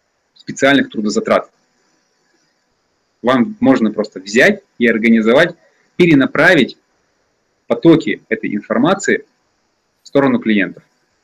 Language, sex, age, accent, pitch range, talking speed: Russian, male, 30-49, native, 110-165 Hz, 80 wpm